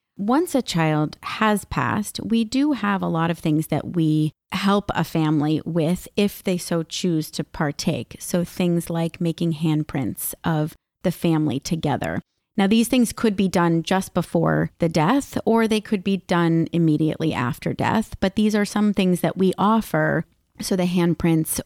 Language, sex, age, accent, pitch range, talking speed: English, female, 30-49, American, 155-185 Hz, 170 wpm